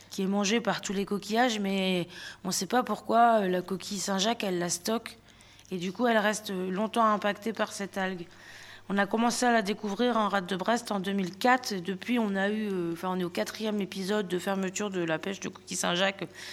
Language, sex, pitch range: French, female, 180-225 Hz